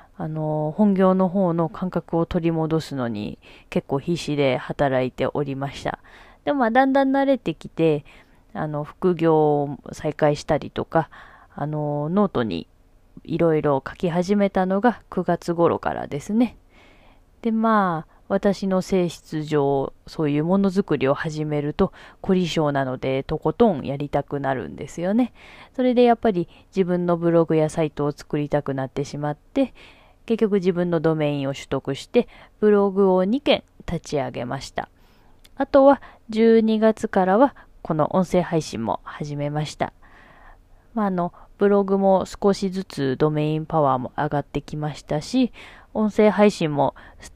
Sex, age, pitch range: female, 20-39, 150-205 Hz